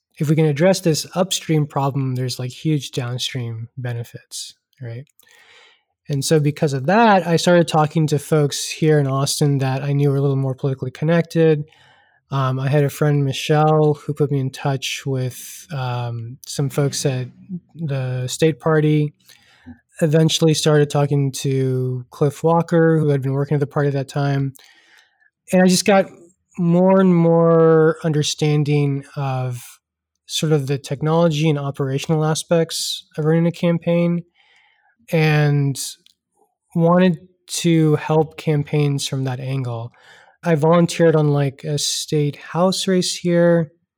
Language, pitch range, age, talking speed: English, 135-165 Hz, 20-39, 145 wpm